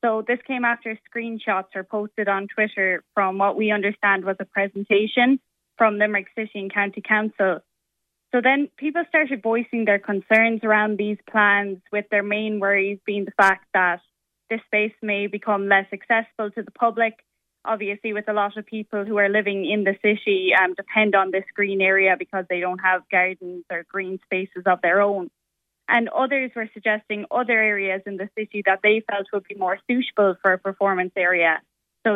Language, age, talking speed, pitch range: English, 10-29, 185 wpm, 195-215 Hz